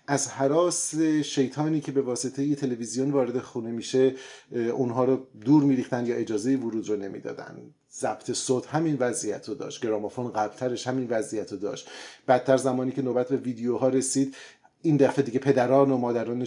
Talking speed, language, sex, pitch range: 160 wpm, Persian, male, 115-135 Hz